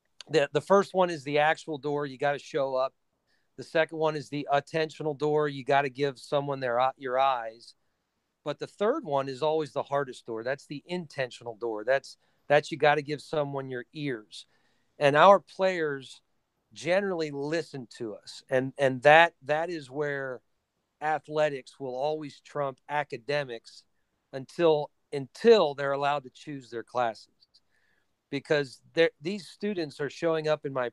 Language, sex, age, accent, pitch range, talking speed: English, male, 40-59, American, 135-165 Hz, 165 wpm